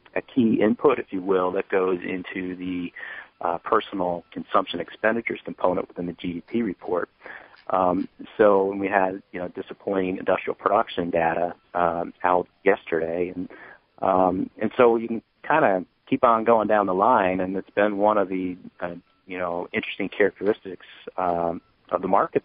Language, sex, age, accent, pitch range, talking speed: English, male, 40-59, American, 85-95 Hz, 165 wpm